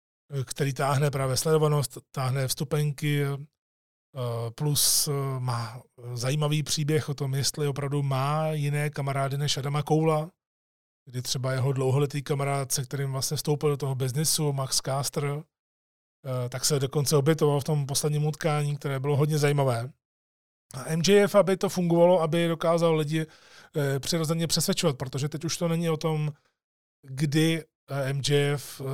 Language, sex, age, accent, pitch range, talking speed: Czech, male, 30-49, native, 135-155 Hz, 135 wpm